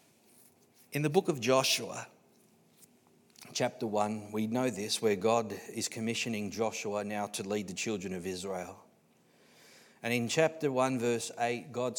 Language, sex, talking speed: English, male, 145 wpm